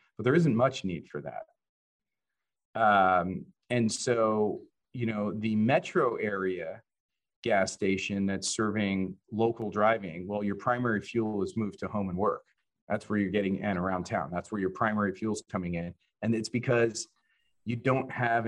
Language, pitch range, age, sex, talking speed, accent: English, 100-125 Hz, 40-59, male, 165 wpm, American